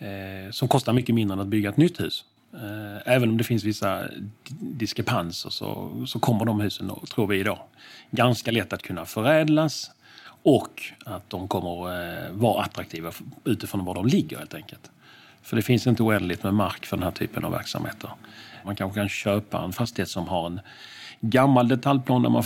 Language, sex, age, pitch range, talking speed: Swedish, male, 40-59, 100-125 Hz, 180 wpm